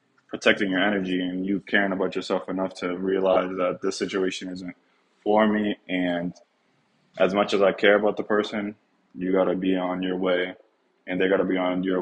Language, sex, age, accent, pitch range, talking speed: English, male, 20-39, American, 90-100 Hz, 200 wpm